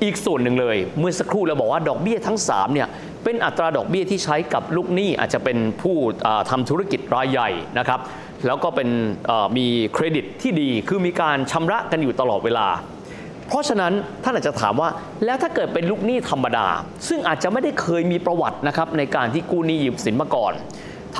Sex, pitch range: male, 130-195 Hz